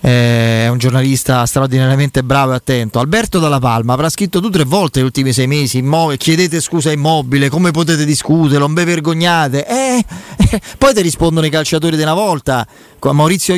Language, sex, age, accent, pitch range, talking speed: Italian, male, 30-49, native, 135-180 Hz, 185 wpm